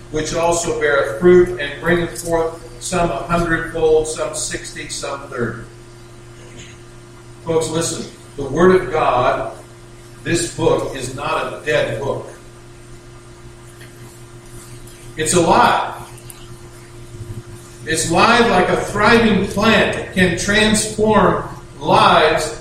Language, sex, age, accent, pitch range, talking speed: English, male, 50-69, American, 120-195 Hz, 105 wpm